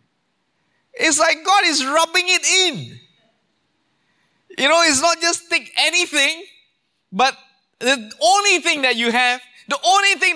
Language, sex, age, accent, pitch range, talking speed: English, male, 20-39, Malaysian, 175-265 Hz, 140 wpm